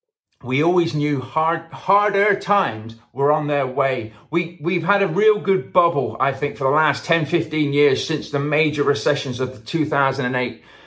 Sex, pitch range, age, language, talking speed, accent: male, 145-200 Hz, 40-59, English, 180 wpm, British